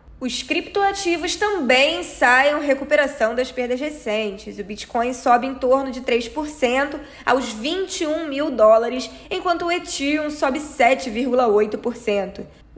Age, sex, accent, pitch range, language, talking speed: 10-29, female, Brazilian, 250-305 Hz, Portuguese, 115 wpm